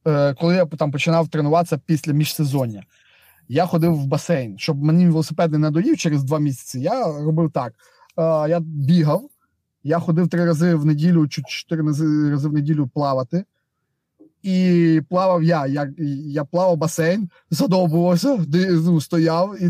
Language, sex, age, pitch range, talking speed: Ukrainian, male, 20-39, 145-170 Hz, 135 wpm